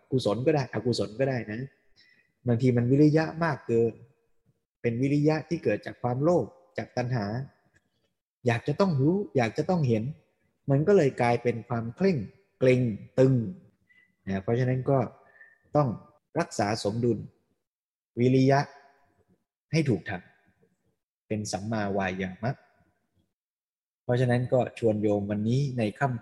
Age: 20-39